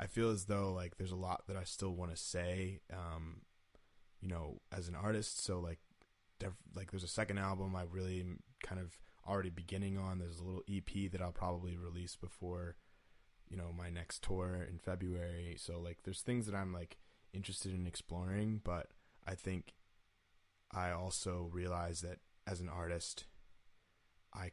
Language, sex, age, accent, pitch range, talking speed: English, male, 20-39, American, 85-95 Hz, 175 wpm